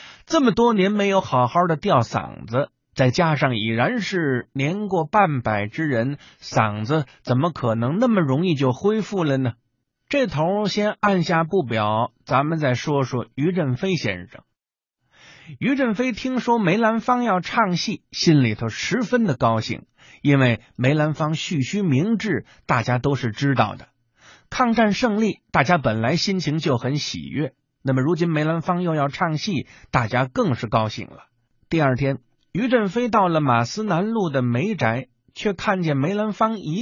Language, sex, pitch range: Chinese, male, 125-195 Hz